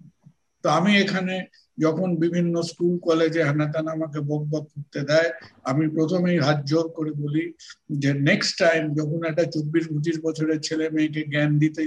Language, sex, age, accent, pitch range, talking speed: Bengali, male, 50-69, native, 145-165 Hz, 105 wpm